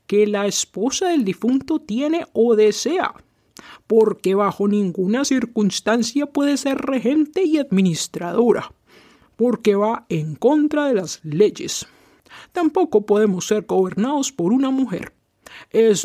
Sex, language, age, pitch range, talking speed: male, English, 60-79, 205-285 Hz, 120 wpm